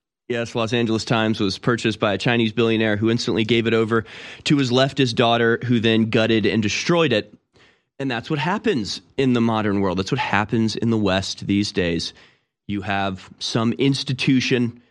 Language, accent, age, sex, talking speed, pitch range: English, American, 30-49, male, 180 wpm, 105-130 Hz